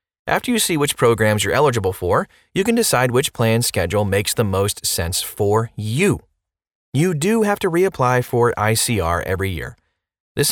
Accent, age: American, 30-49